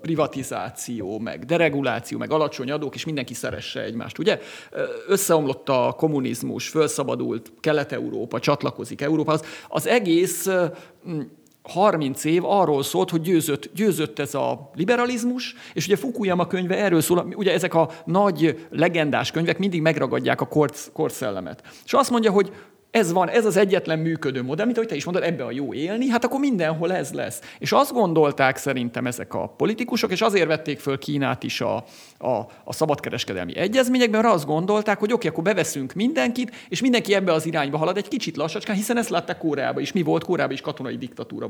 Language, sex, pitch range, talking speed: Hungarian, male, 150-210 Hz, 170 wpm